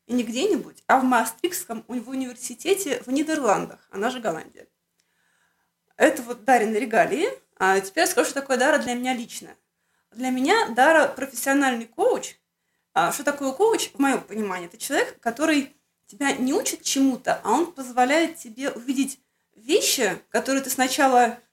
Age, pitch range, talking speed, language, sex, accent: 20-39, 245-310 Hz, 155 wpm, Russian, female, native